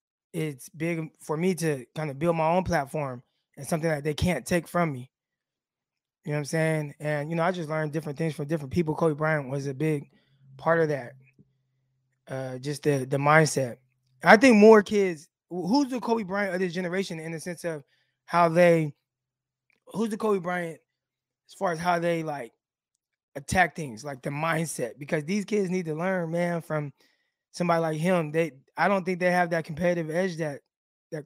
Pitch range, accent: 145-180 Hz, American